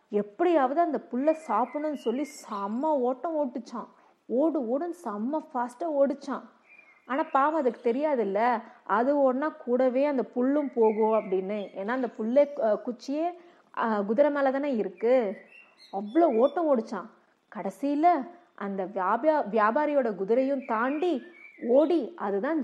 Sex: female